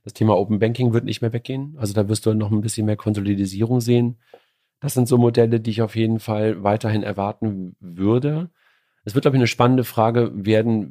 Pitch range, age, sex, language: 100-115 Hz, 40-59, male, German